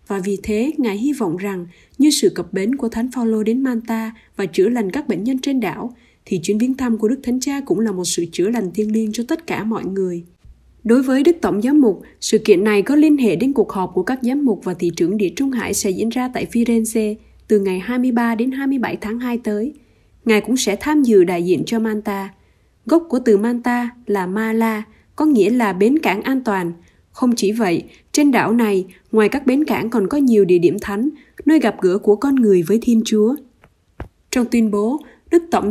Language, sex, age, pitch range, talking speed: Vietnamese, female, 20-39, 200-255 Hz, 225 wpm